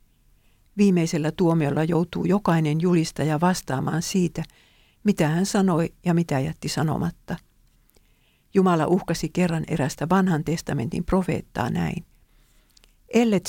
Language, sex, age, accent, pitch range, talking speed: English, female, 50-69, Finnish, 150-185 Hz, 100 wpm